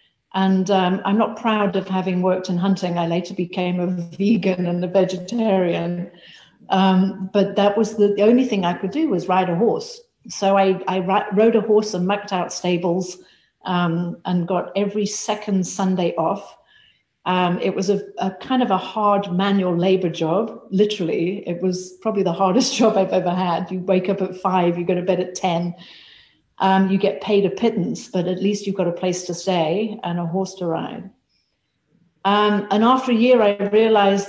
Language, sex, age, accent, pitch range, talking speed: English, female, 50-69, British, 180-210 Hz, 195 wpm